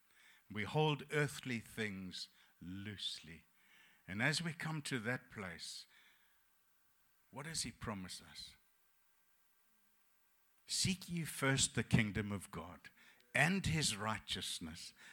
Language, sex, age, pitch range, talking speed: English, male, 60-79, 100-145 Hz, 105 wpm